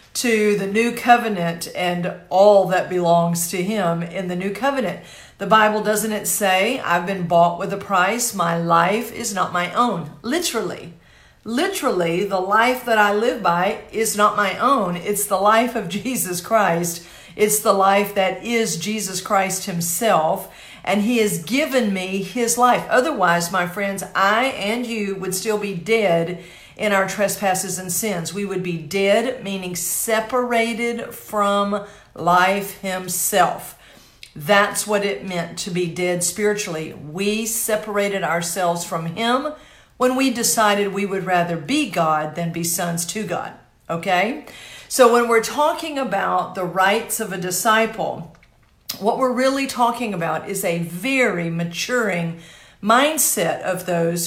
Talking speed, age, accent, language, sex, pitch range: 150 wpm, 50-69, American, English, female, 180-225 Hz